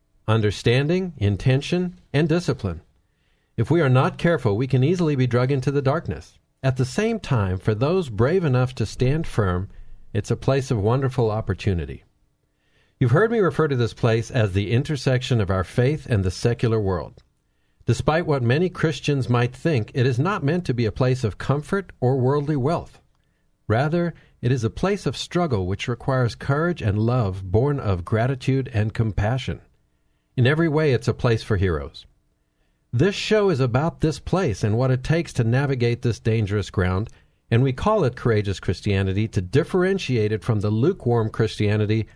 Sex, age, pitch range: male, 50-69, 110-145 Hz